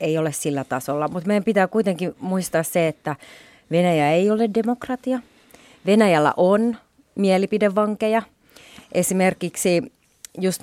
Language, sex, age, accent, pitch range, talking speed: Finnish, female, 30-49, native, 155-195 Hz, 115 wpm